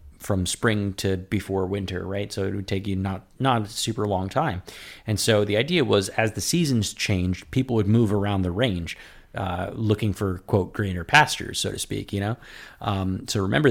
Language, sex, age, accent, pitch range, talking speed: English, male, 30-49, American, 95-110 Hz, 200 wpm